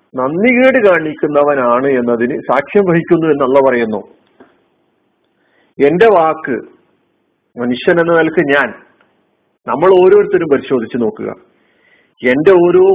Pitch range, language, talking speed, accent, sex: 155-210 Hz, Malayalam, 95 wpm, native, male